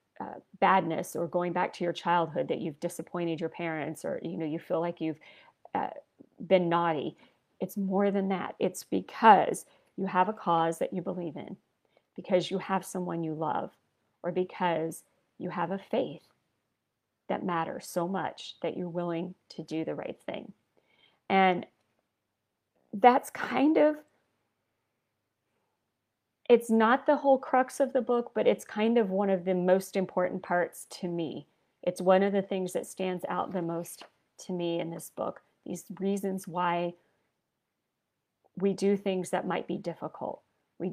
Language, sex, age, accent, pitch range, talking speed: English, female, 40-59, American, 175-200 Hz, 165 wpm